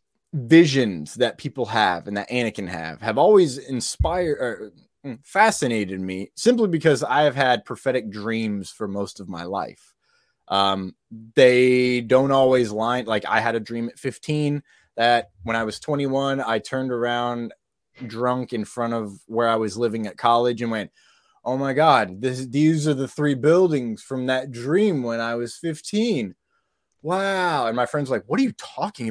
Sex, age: male, 20-39